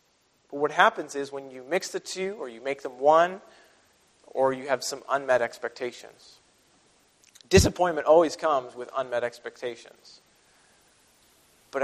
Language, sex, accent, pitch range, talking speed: English, male, American, 130-180 Hz, 130 wpm